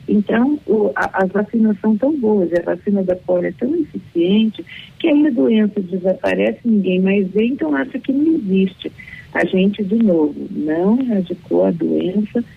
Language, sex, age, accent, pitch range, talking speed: Portuguese, female, 50-69, Brazilian, 165-220 Hz, 160 wpm